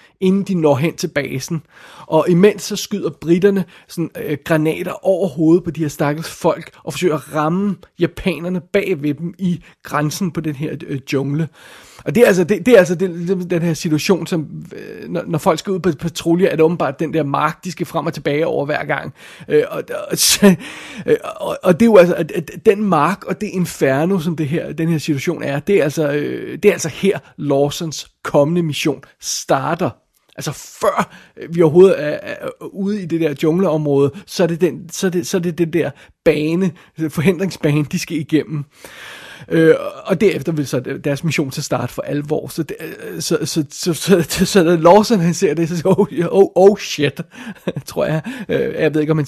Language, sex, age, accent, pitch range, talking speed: Danish, male, 30-49, native, 155-190 Hz, 205 wpm